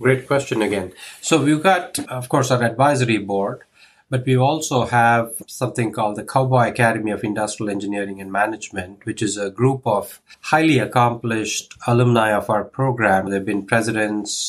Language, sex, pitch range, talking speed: English, male, 105-125 Hz, 160 wpm